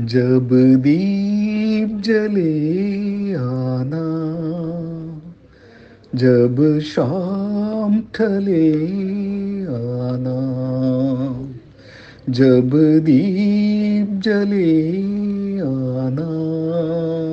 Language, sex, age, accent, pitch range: Tamil, male, 50-69, native, 130-200 Hz